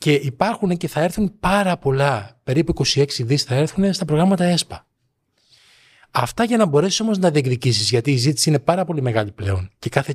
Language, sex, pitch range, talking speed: Greek, male, 125-180 Hz, 190 wpm